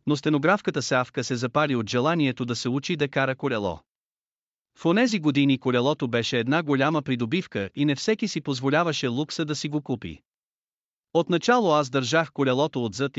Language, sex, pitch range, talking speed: Bulgarian, male, 125-155 Hz, 165 wpm